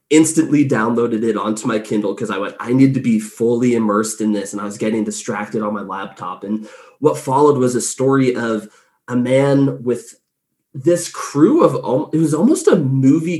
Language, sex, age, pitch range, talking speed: English, male, 20-39, 110-135 Hz, 195 wpm